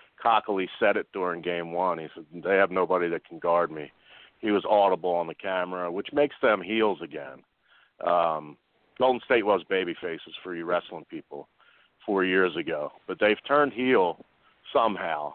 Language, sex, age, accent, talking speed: English, male, 50-69, American, 170 wpm